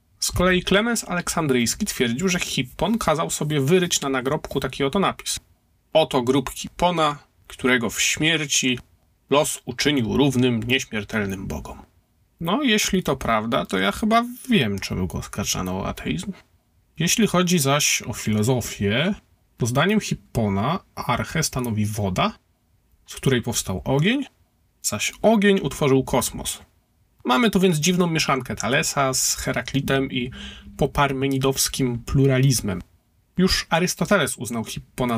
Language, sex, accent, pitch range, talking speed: Polish, male, native, 125-180 Hz, 125 wpm